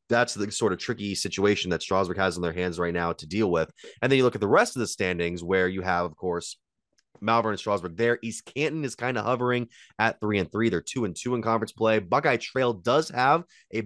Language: English